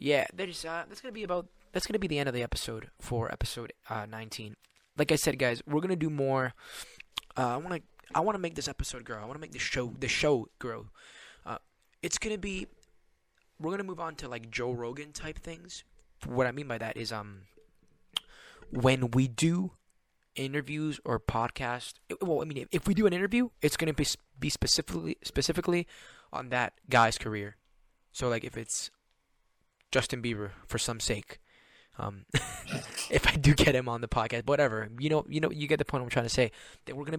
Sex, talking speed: male, 215 wpm